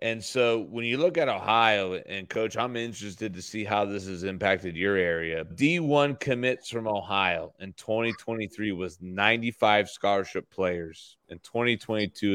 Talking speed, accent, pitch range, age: 150 wpm, American, 95-130 Hz, 30-49